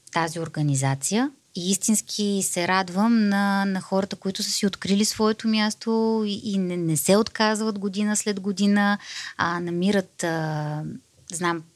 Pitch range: 165-210 Hz